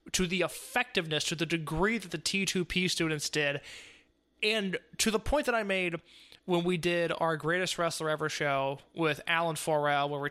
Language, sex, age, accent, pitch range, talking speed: English, male, 20-39, American, 155-185 Hz, 180 wpm